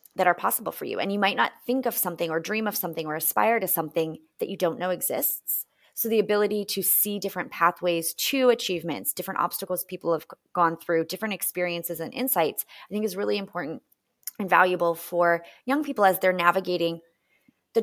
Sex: female